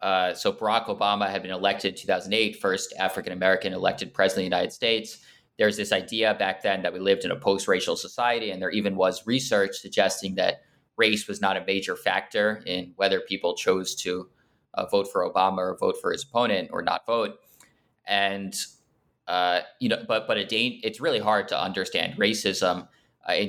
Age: 20-39